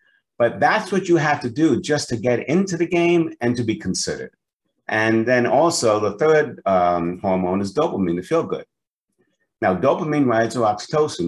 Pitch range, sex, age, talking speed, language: 100-150 Hz, male, 50-69, 180 wpm, English